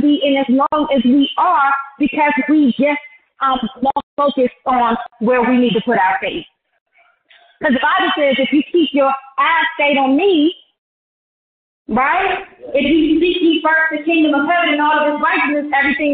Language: English